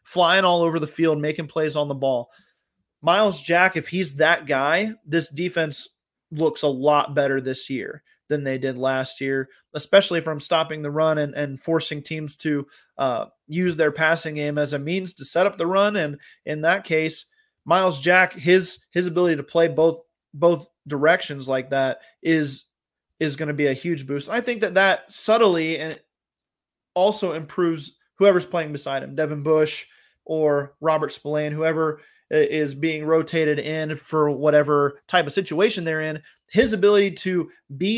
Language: English